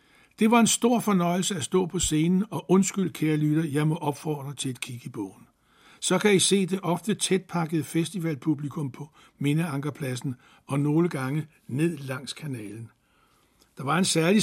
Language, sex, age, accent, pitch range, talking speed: Danish, male, 60-79, native, 145-180 Hz, 175 wpm